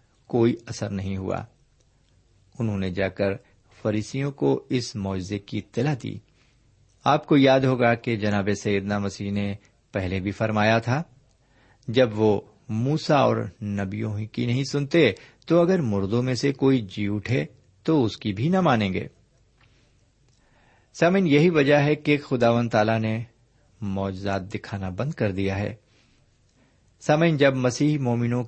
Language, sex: Urdu, male